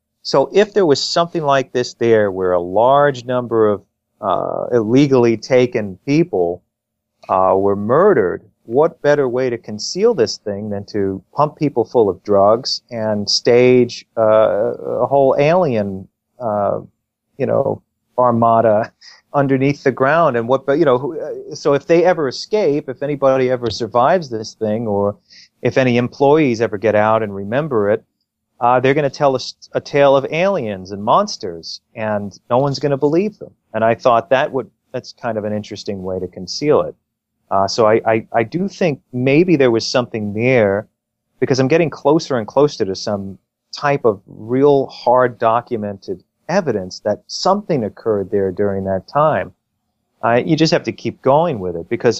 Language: English